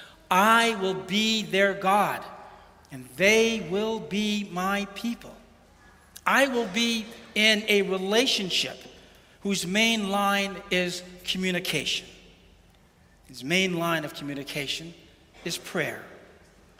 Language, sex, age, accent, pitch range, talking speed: English, male, 60-79, American, 170-210 Hz, 105 wpm